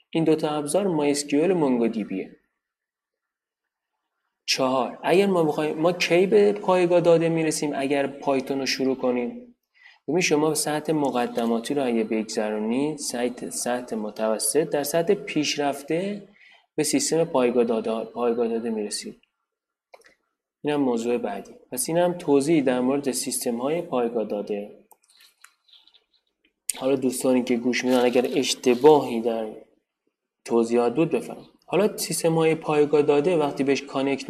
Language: Persian